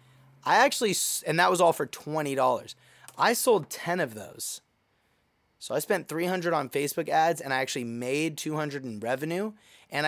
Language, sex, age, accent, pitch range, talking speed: English, male, 20-39, American, 125-165 Hz, 165 wpm